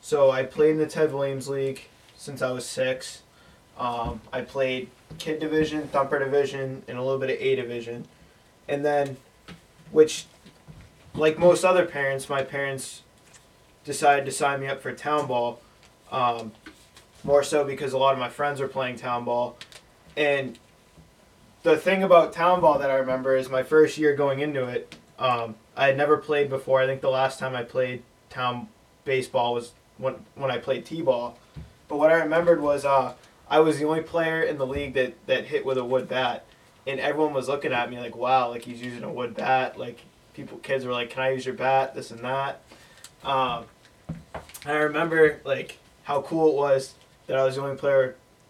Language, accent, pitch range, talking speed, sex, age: English, American, 130-150 Hz, 195 wpm, male, 20-39